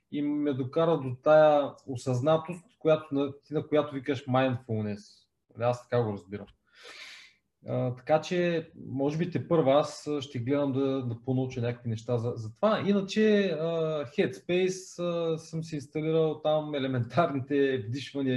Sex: male